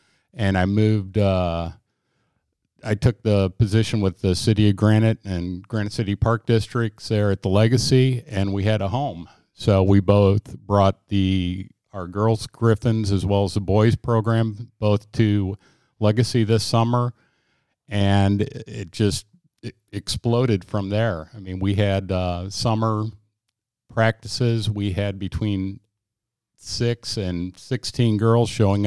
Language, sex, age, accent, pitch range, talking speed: English, male, 50-69, American, 100-115 Hz, 140 wpm